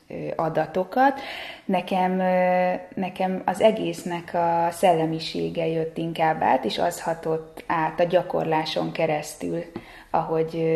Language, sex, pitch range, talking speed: Hungarian, female, 160-180 Hz, 100 wpm